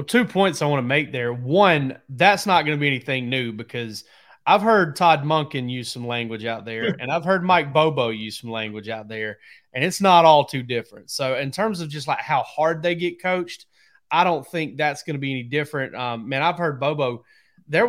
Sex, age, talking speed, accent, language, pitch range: male, 30-49, 225 wpm, American, English, 130-175 Hz